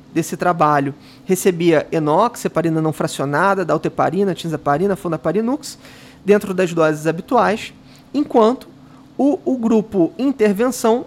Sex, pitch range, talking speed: male, 165-230 Hz, 105 wpm